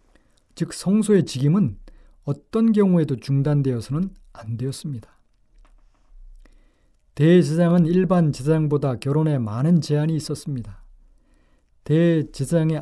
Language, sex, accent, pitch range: Korean, male, native, 130-170 Hz